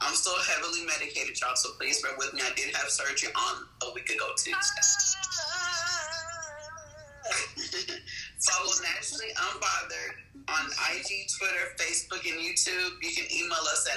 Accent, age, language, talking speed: American, 30-49, English, 140 wpm